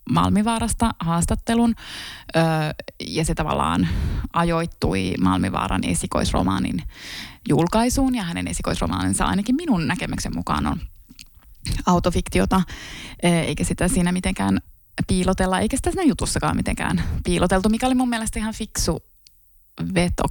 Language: Finnish